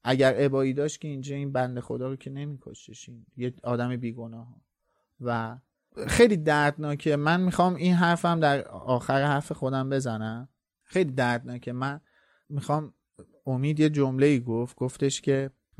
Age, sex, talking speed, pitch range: 30-49, male, 140 wpm, 120-140 Hz